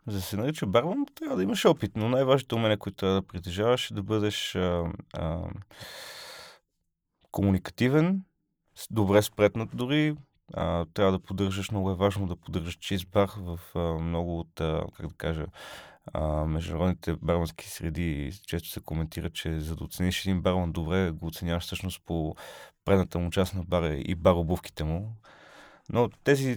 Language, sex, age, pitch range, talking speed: Bulgarian, male, 30-49, 85-105 Hz, 165 wpm